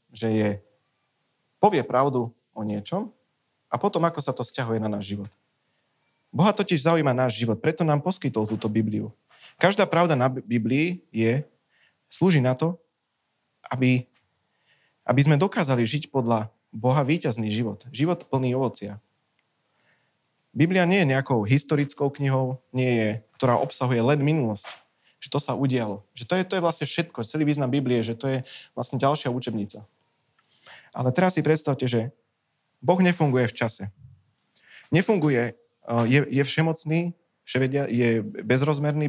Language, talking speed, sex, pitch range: Slovak, 140 wpm, male, 115-155 Hz